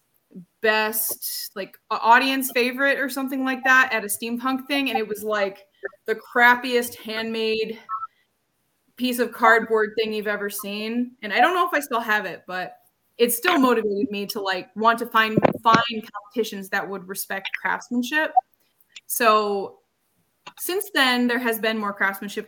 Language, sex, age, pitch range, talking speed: English, female, 20-39, 205-255 Hz, 160 wpm